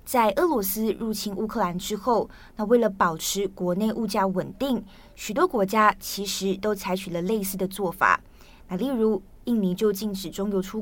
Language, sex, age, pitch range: Chinese, female, 20-39, 190-230 Hz